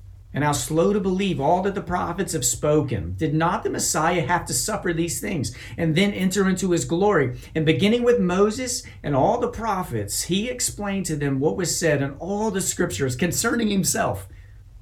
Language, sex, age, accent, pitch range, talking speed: English, male, 50-69, American, 105-160 Hz, 190 wpm